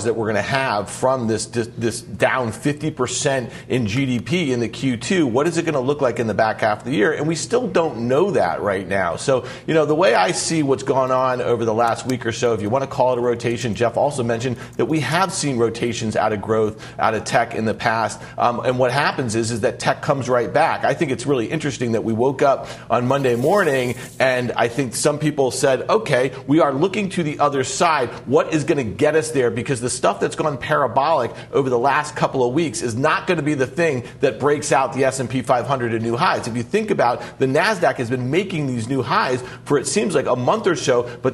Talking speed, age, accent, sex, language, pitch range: 250 wpm, 40-59, American, male, English, 120-150 Hz